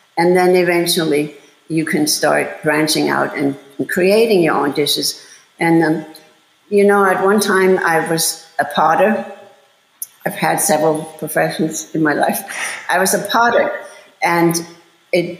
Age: 60-79